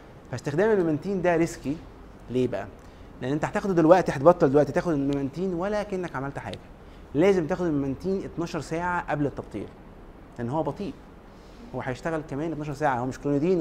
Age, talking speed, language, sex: 30-49, 155 wpm, Arabic, male